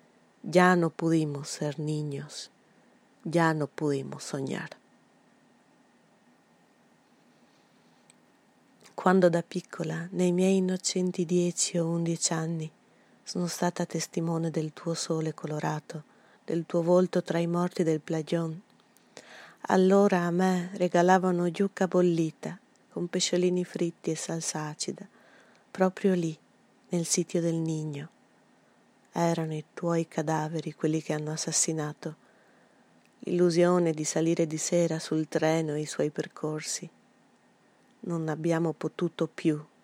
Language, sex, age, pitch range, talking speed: Italian, female, 30-49, 155-180 Hz, 110 wpm